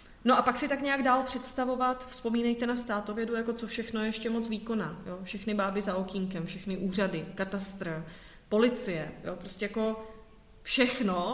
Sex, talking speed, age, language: female, 150 wpm, 30-49, Czech